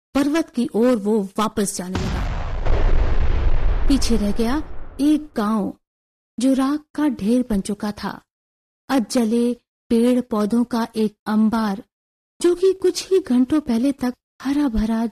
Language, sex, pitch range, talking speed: Hindi, female, 220-295 Hz, 135 wpm